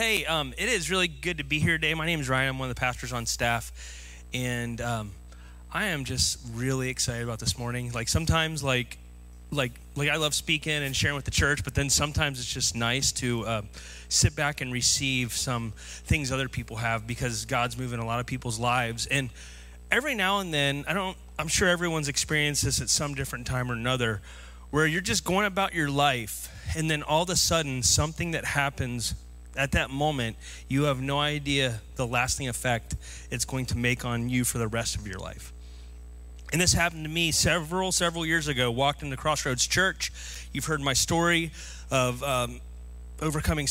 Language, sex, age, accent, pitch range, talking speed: English, male, 30-49, American, 115-145 Hz, 200 wpm